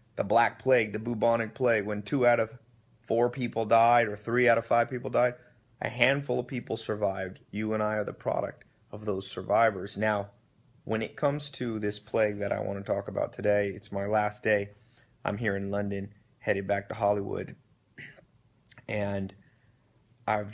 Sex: male